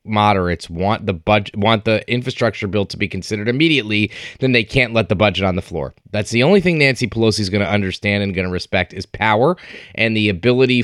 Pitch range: 100-125 Hz